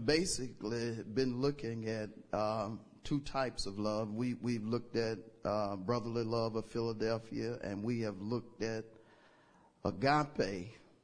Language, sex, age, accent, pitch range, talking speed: English, male, 50-69, American, 115-135 Hz, 130 wpm